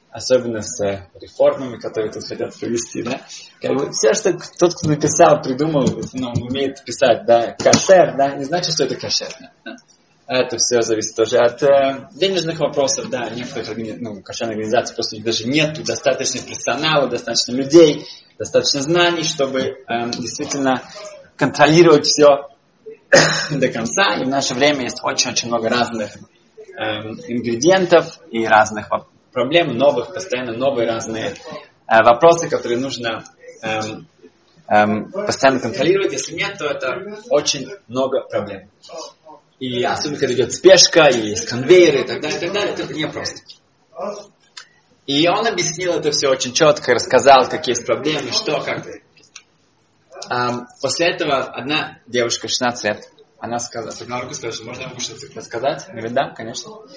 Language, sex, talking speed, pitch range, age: Russian, male, 140 wpm, 115-160 Hz, 20-39